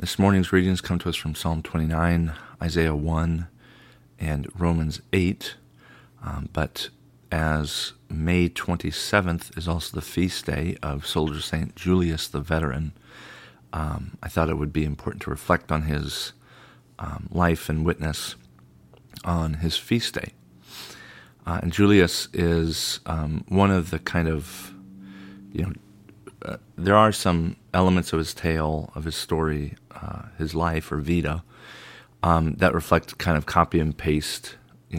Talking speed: 145 wpm